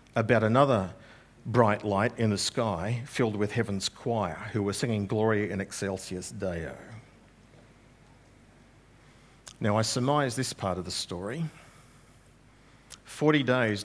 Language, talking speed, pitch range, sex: English, 120 wpm, 105-135 Hz, male